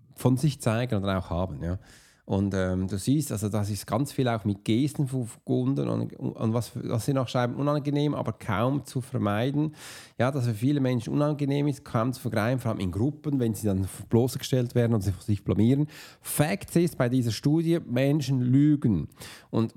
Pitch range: 110-145 Hz